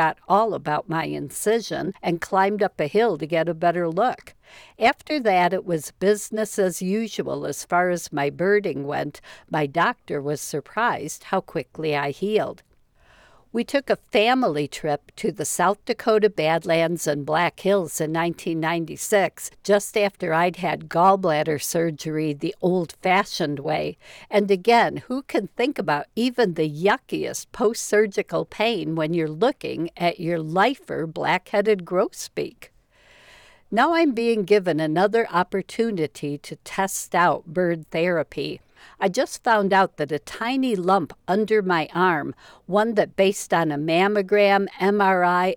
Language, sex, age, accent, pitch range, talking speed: English, female, 60-79, American, 165-210 Hz, 140 wpm